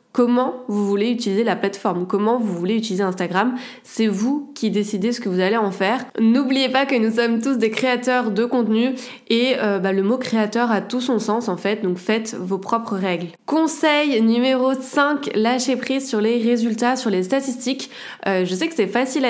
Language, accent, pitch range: French, French, 195-245 Hz